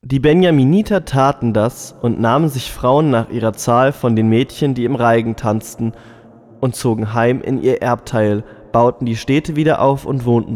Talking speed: 175 wpm